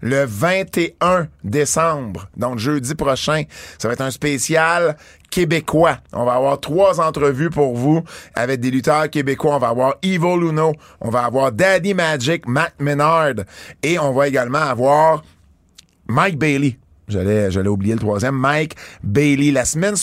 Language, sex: French, male